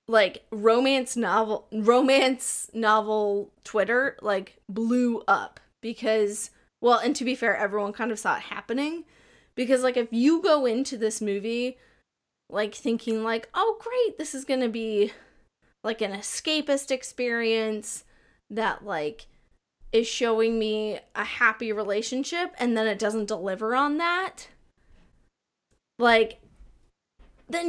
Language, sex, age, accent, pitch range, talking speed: English, female, 20-39, American, 215-255 Hz, 130 wpm